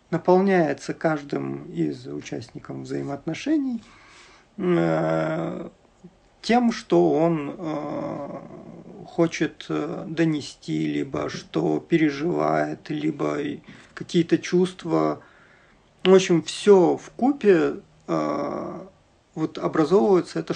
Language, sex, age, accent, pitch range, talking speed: Russian, male, 50-69, native, 145-175 Hz, 80 wpm